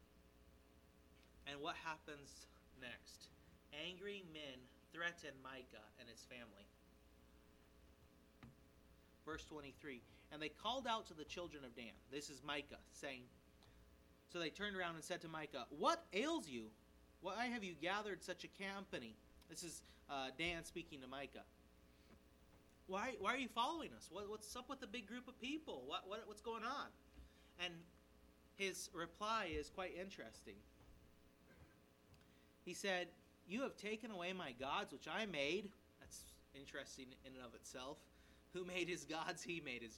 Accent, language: American, English